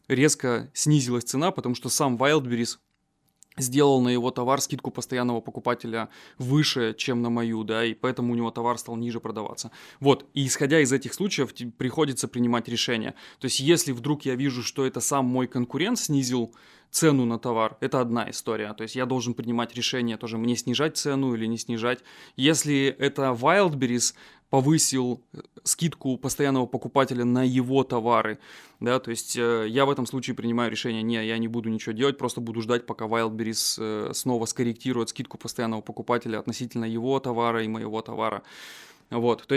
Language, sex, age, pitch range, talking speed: Russian, male, 20-39, 115-135 Hz, 165 wpm